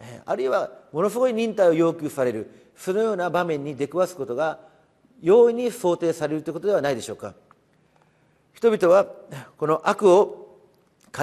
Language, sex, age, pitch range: Japanese, male, 40-59, 145-205 Hz